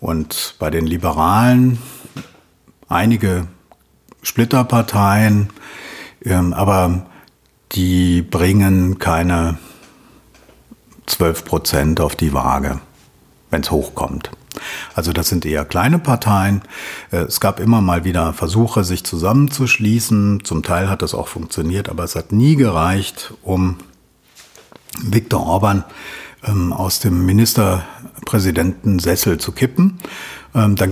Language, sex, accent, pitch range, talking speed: German, male, German, 90-115 Hz, 100 wpm